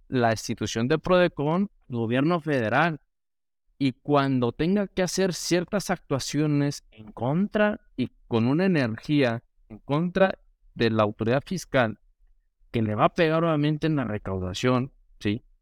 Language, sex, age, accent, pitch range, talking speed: Spanish, male, 50-69, Mexican, 115-165 Hz, 135 wpm